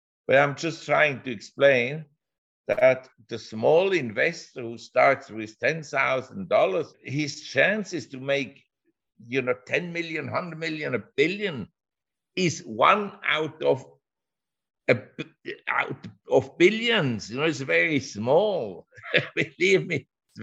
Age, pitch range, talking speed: 60-79, 115-155 Hz, 120 wpm